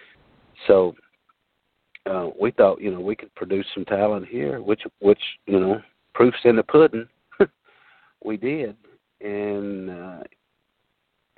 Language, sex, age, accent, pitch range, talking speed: English, male, 50-69, American, 100-115 Hz, 125 wpm